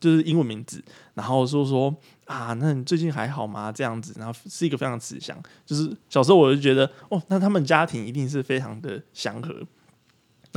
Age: 20-39